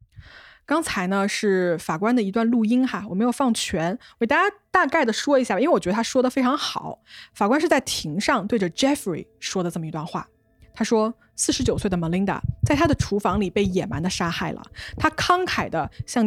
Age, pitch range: 20-39, 190-260 Hz